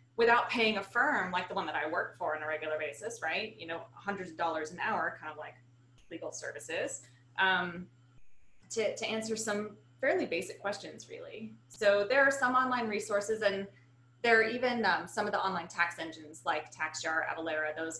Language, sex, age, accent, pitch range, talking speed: English, female, 20-39, American, 140-205 Hz, 195 wpm